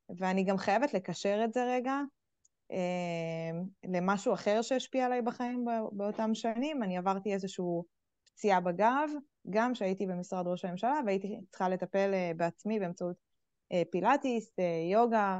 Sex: female